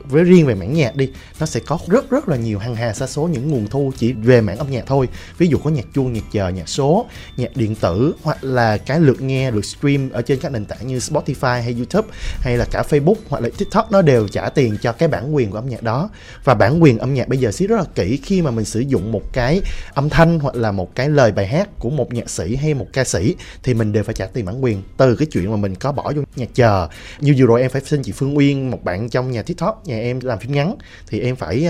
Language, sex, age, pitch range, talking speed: Vietnamese, male, 20-39, 115-150 Hz, 280 wpm